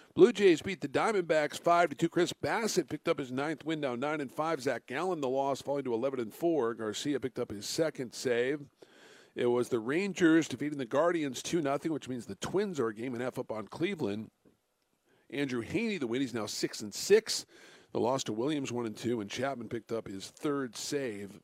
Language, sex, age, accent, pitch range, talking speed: English, male, 50-69, American, 120-160 Hz, 205 wpm